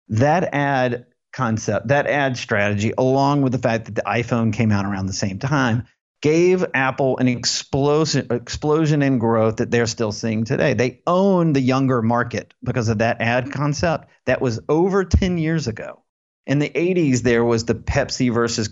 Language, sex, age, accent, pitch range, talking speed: English, male, 40-59, American, 115-150 Hz, 175 wpm